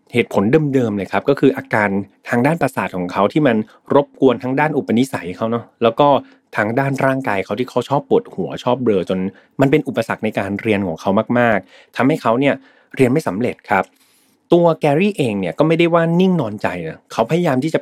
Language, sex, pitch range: Thai, male, 105-140 Hz